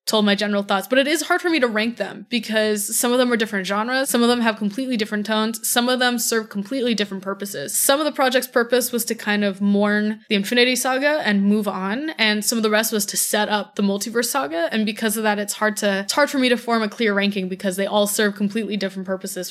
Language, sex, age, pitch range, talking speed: English, female, 10-29, 200-245 Hz, 260 wpm